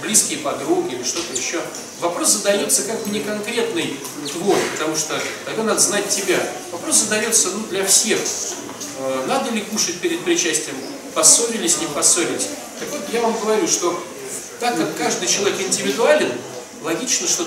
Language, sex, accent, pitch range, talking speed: Russian, male, native, 195-280 Hz, 150 wpm